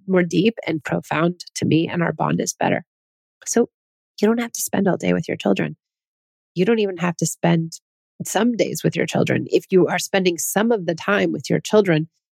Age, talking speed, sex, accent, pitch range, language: 30-49, 215 wpm, female, American, 160-195 Hz, English